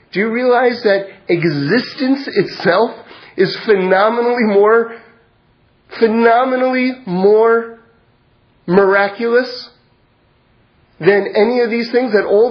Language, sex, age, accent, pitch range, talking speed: English, male, 30-49, American, 195-245 Hz, 90 wpm